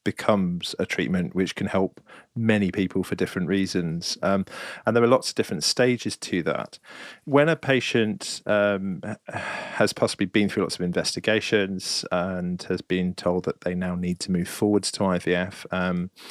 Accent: British